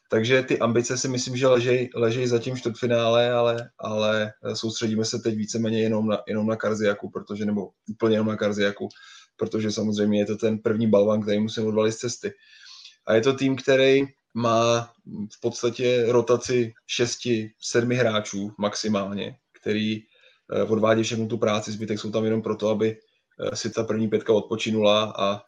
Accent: native